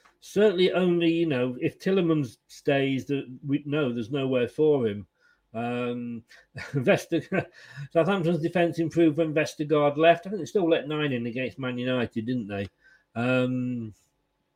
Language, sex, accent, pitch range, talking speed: English, male, British, 140-185 Hz, 145 wpm